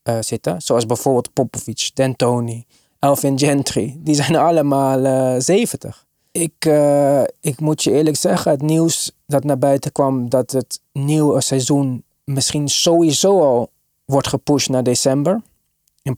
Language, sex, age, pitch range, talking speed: Dutch, male, 20-39, 130-155 Hz, 140 wpm